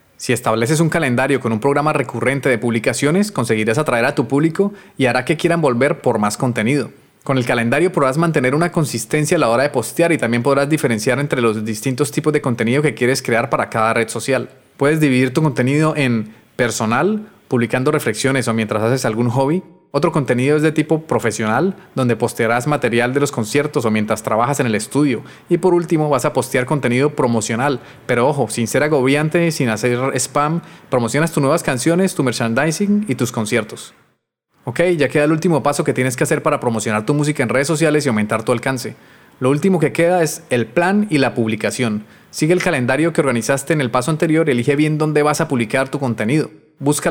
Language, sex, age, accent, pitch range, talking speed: Spanish, male, 30-49, Colombian, 120-150 Hz, 200 wpm